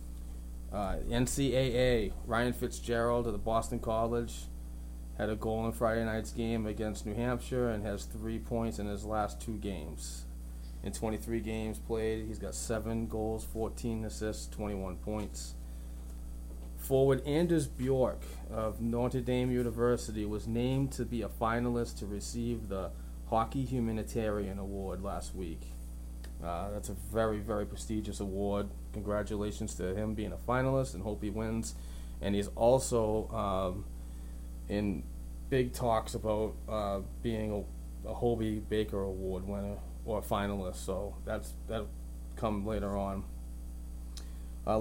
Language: English